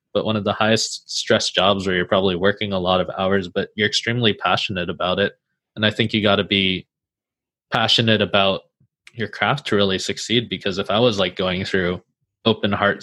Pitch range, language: 100-120 Hz, English